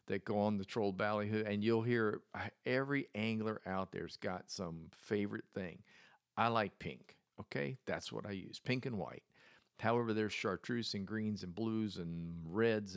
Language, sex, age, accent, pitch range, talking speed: English, male, 50-69, American, 100-115 Hz, 170 wpm